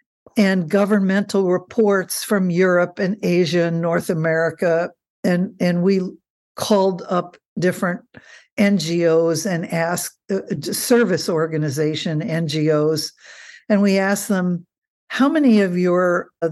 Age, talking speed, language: 60-79, 115 wpm, English